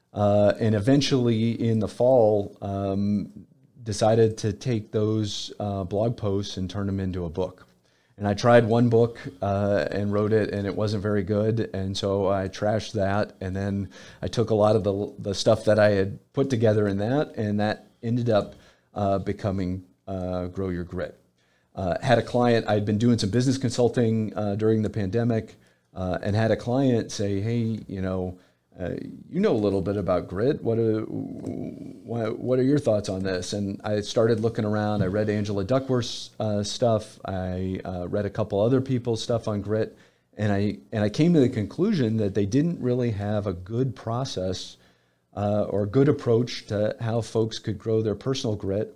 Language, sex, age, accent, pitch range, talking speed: English, male, 40-59, American, 100-115 Hz, 190 wpm